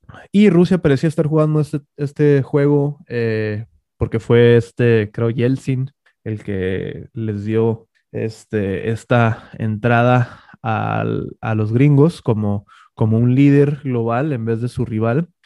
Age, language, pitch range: 20-39, Spanish, 105-130 Hz